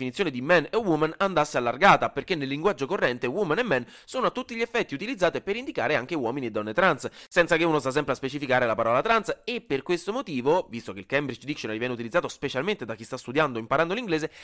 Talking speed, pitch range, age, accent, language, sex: 235 wpm, 125-175 Hz, 30-49, native, Italian, male